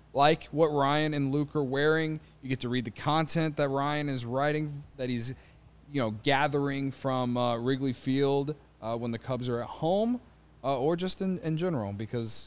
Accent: American